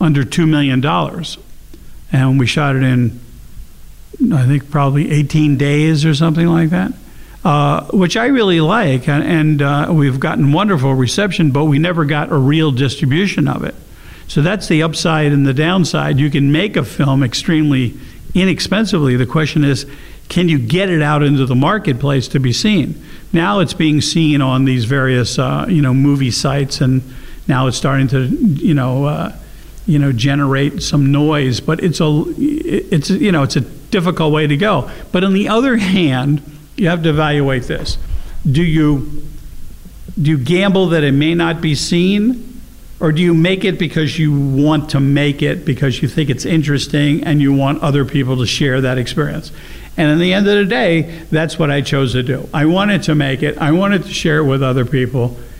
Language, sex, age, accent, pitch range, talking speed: French, male, 50-69, American, 140-165 Hz, 190 wpm